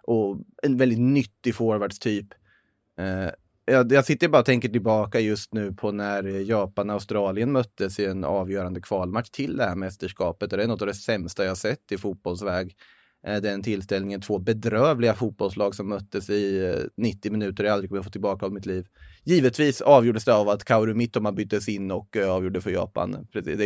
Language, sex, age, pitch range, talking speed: Swedish, male, 20-39, 100-115 Hz, 185 wpm